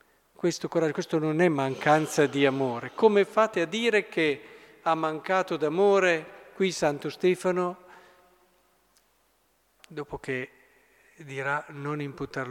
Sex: male